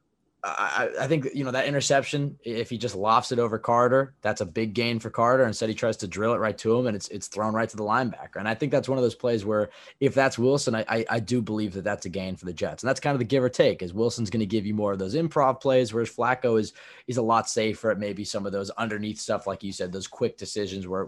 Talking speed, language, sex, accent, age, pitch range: 290 wpm, English, male, American, 20-39, 105-130 Hz